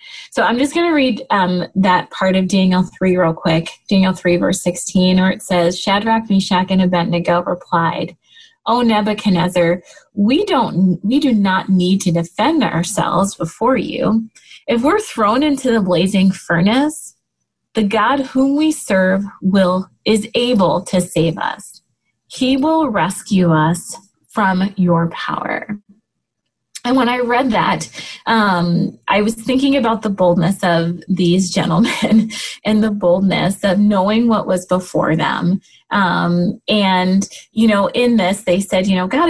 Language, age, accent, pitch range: English, 20-39, American, 180-230 Hz